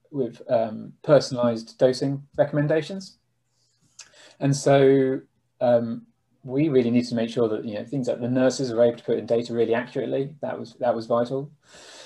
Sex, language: male, English